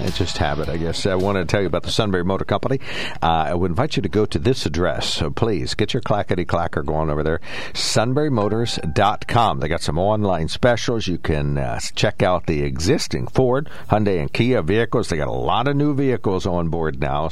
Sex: male